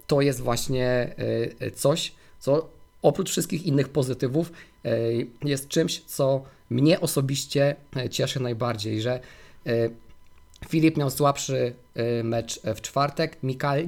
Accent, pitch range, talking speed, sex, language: native, 115-140 Hz, 105 wpm, male, Polish